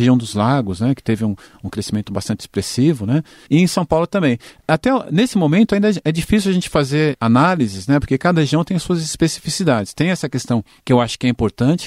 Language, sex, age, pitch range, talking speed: Portuguese, male, 40-59, 115-150 Hz, 220 wpm